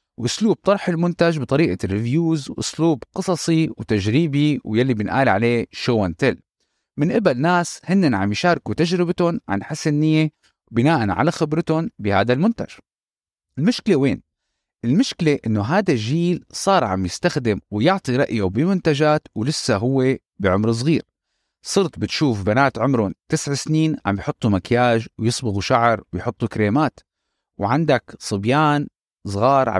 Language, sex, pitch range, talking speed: Arabic, male, 110-160 Hz, 120 wpm